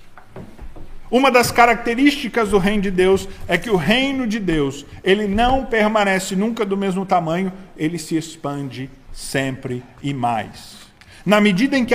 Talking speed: 150 wpm